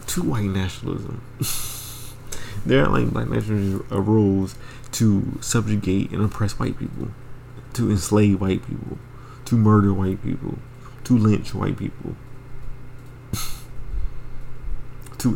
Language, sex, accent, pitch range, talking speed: English, male, American, 105-125 Hz, 110 wpm